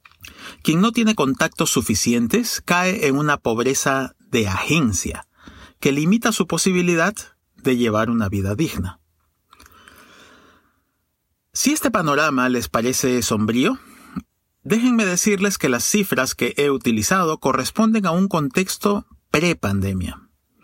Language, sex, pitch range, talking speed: Spanish, male, 115-195 Hz, 115 wpm